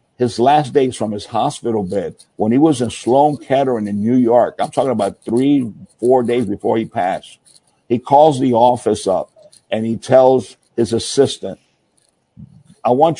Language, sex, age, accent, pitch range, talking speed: English, male, 60-79, American, 115-140 Hz, 170 wpm